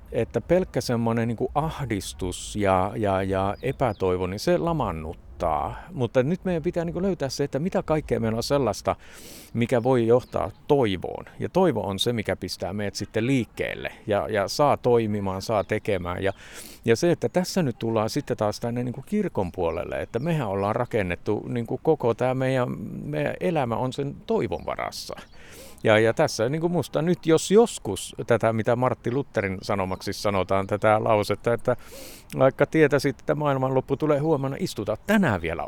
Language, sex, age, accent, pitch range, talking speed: Finnish, male, 50-69, native, 105-150 Hz, 165 wpm